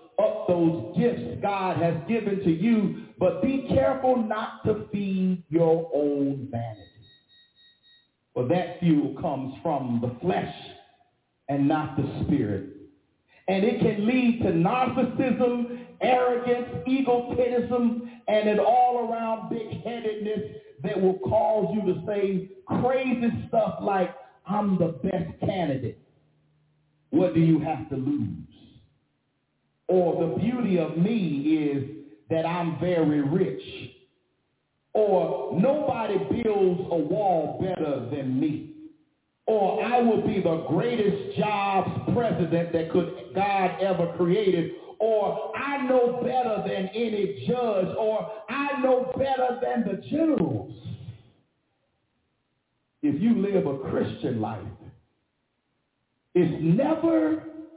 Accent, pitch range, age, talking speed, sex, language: American, 160-235 Hz, 40-59, 115 wpm, male, English